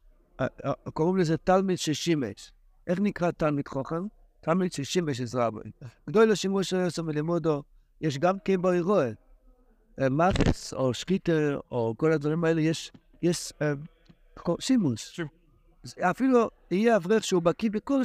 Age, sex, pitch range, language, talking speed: 60-79, male, 145-185 Hz, Hebrew, 115 wpm